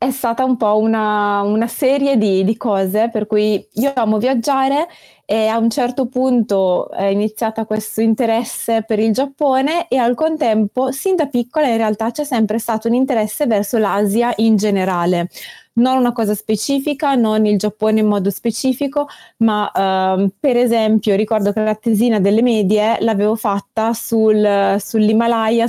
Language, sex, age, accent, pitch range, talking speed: Italian, female, 20-39, native, 205-240 Hz, 155 wpm